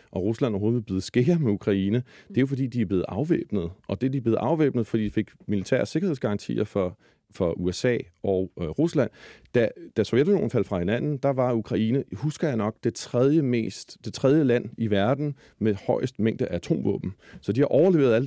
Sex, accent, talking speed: male, native, 205 wpm